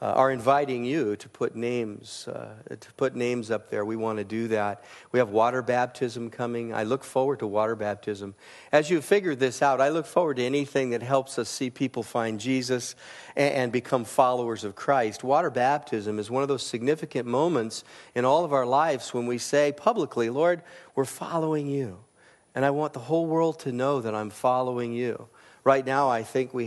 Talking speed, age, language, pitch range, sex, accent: 205 wpm, 40-59, English, 110-135 Hz, male, American